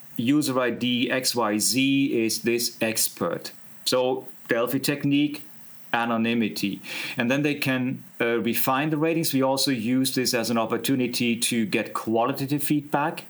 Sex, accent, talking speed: male, German, 130 wpm